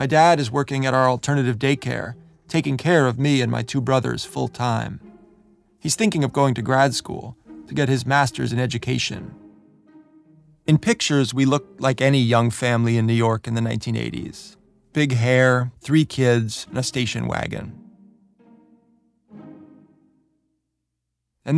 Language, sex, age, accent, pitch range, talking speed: English, male, 30-49, American, 115-140 Hz, 145 wpm